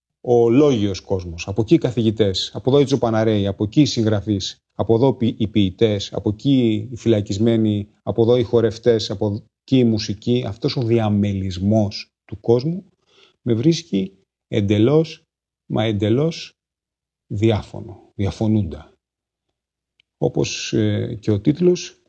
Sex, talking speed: male, 115 wpm